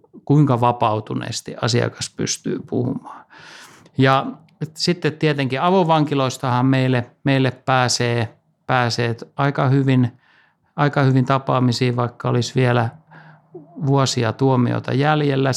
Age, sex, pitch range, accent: 60-79, male, 120-150 Hz, native